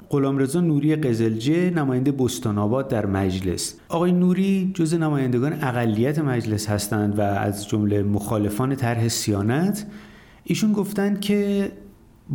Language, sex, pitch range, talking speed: Persian, male, 110-165 Hz, 110 wpm